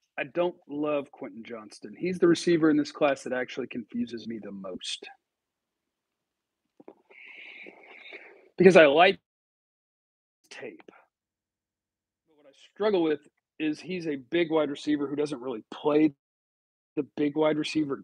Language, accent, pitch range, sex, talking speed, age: English, American, 150-180 Hz, male, 130 wpm, 40-59